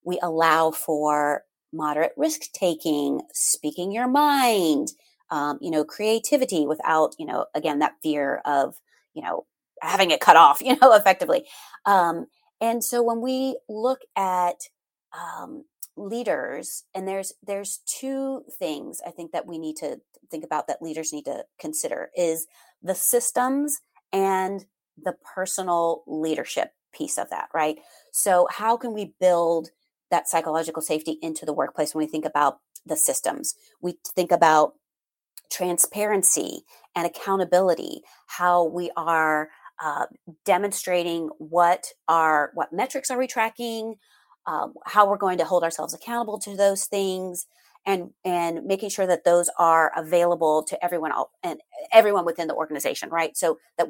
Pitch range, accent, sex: 165-220 Hz, American, female